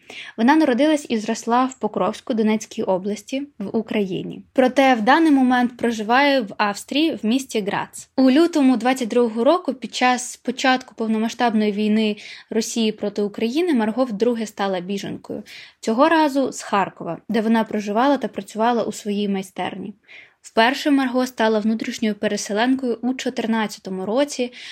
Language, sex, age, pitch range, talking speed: Ukrainian, female, 20-39, 210-255 Hz, 135 wpm